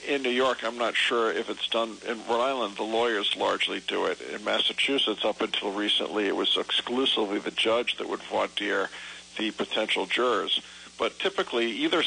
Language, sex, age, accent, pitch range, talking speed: English, male, 50-69, American, 115-130 Hz, 180 wpm